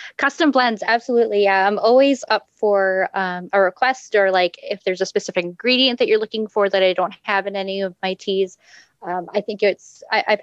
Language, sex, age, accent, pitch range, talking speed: English, female, 20-39, American, 175-205 Hz, 200 wpm